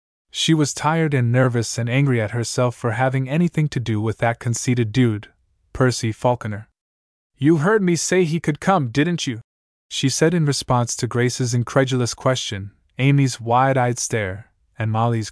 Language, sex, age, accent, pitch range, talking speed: English, male, 20-39, American, 110-145 Hz, 165 wpm